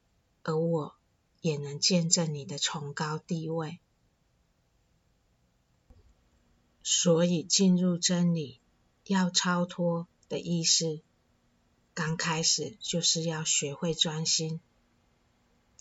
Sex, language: female, Chinese